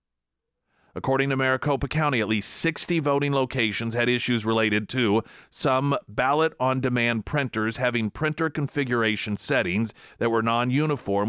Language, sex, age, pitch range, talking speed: English, male, 40-59, 115-150 Hz, 120 wpm